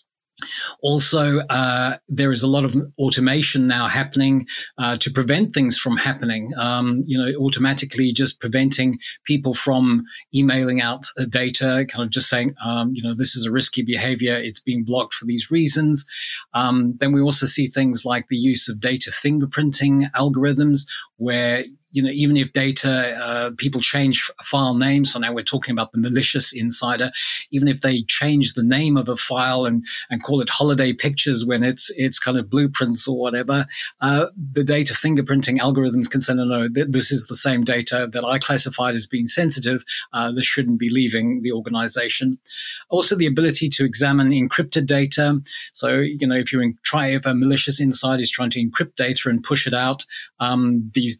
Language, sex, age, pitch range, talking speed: English, male, 30-49, 125-140 Hz, 185 wpm